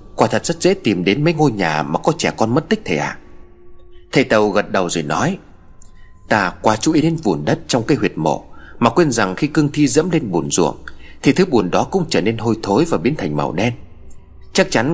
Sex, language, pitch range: male, Vietnamese, 85-145 Hz